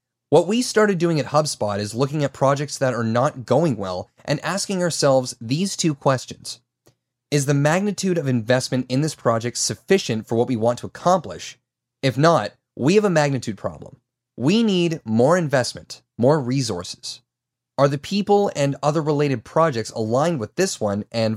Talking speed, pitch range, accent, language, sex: 170 wpm, 120-155 Hz, American, English, male